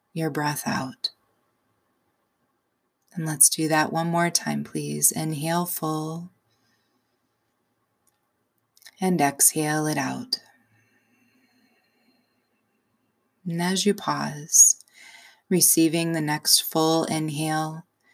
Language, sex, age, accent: English, female, 20-39, American